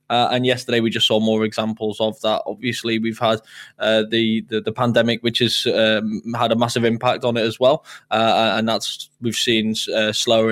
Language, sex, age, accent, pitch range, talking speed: English, male, 10-29, British, 110-120 Hz, 205 wpm